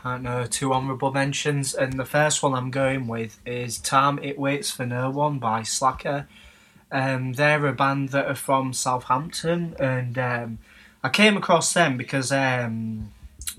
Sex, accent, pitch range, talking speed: male, British, 125-145 Hz, 165 wpm